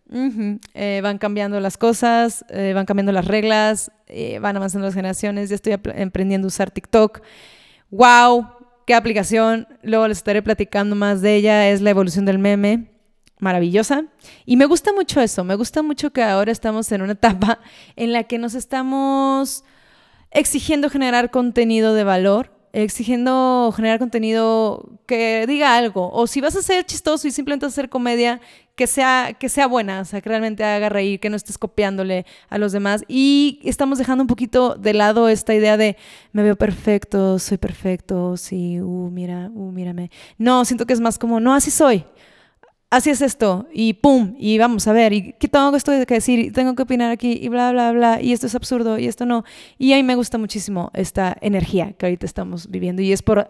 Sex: female